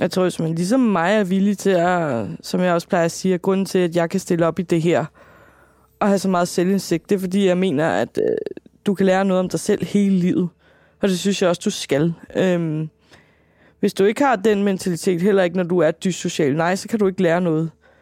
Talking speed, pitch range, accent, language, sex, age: 245 wpm, 175-210 Hz, native, Danish, female, 20-39